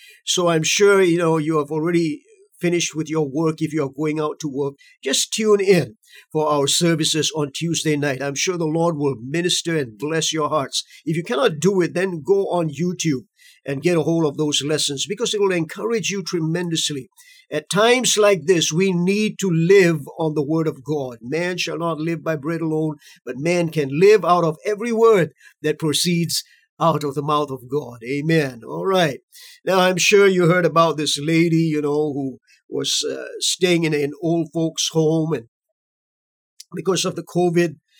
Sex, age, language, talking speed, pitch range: male, 50-69, English, 195 wpm, 150-185 Hz